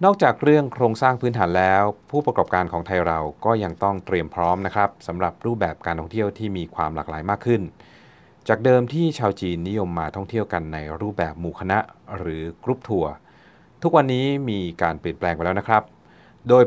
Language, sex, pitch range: Thai, male, 85-110 Hz